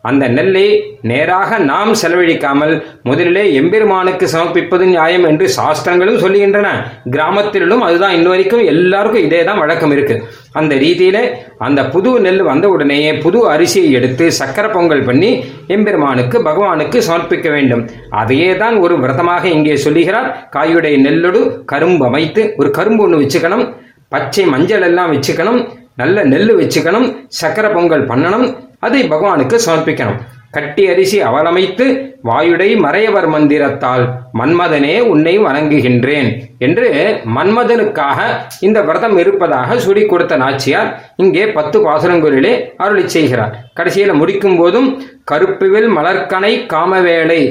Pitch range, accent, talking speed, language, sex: 150-215 Hz, native, 105 wpm, Tamil, male